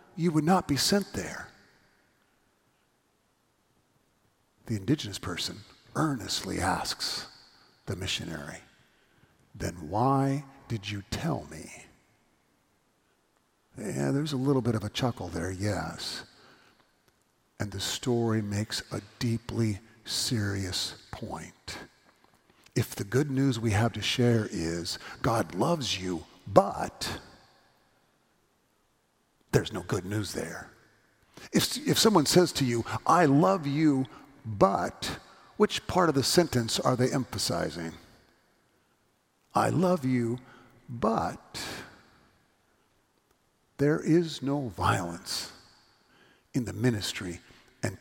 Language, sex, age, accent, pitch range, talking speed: English, male, 50-69, American, 100-140 Hz, 105 wpm